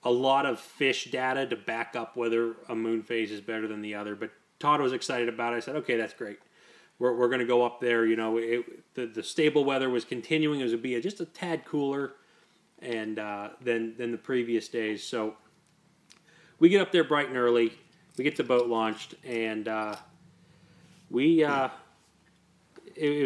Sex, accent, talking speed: male, American, 200 wpm